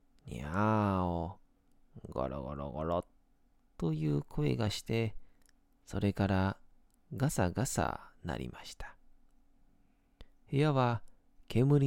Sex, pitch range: male, 85-120 Hz